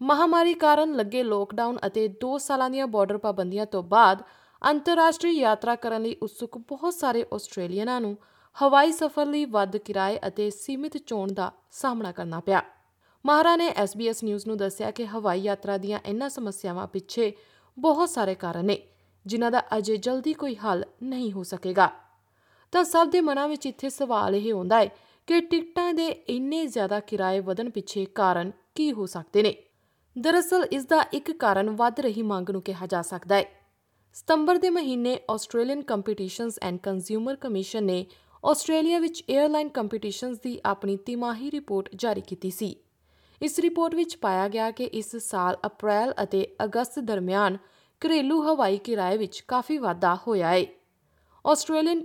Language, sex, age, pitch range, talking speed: Punjabi, female, 20-39, 200-280 Hz, 155 wpm